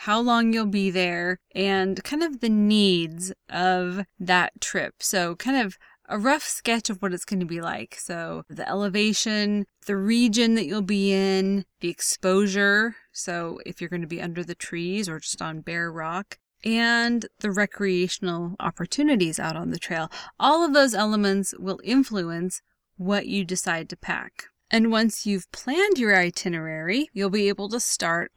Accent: American